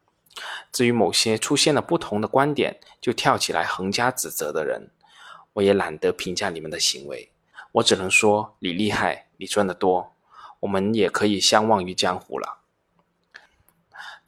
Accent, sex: native, male